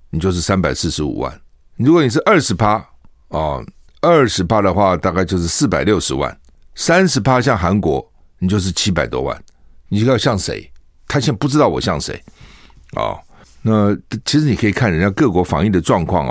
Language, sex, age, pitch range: Chinese, male, 60-79, 90-125 Hz